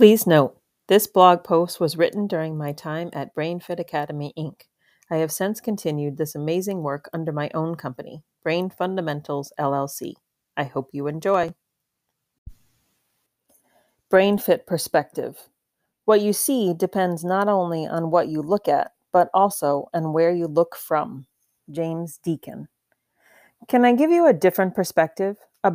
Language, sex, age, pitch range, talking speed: English, female, 40-59, 160-200 Hz, 145 wpm